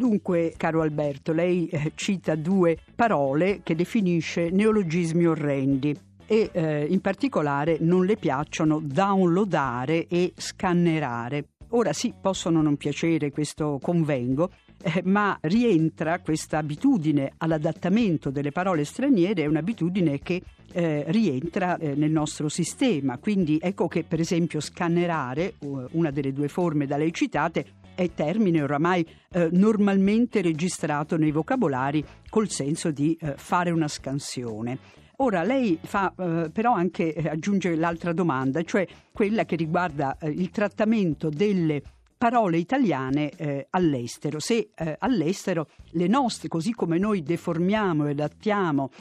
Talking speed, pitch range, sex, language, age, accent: 130 wpm, 150-190 Hz, female, Italian, 50-69, native